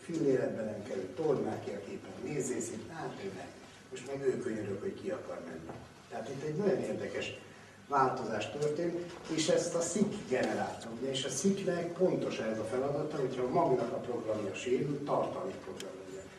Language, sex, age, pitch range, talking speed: Hungarian, male, 60-79, 115-165 Hz, 150 wpm